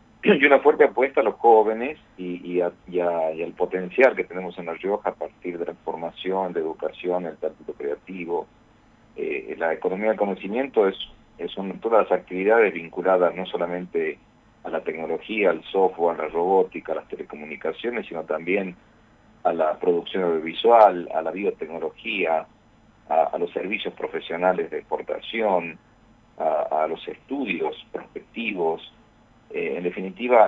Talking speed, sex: 155 wpm, male